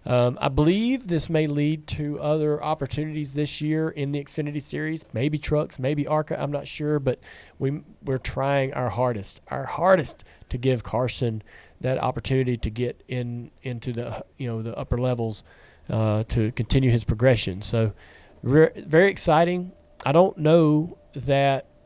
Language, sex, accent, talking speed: English, male, American, 160 wpm